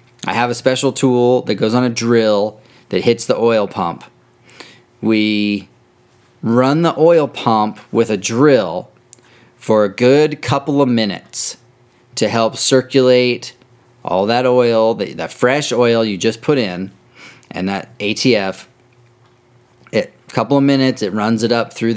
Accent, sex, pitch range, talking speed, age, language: American, male, 110-125 Hz, 150 wpm, 30-49, English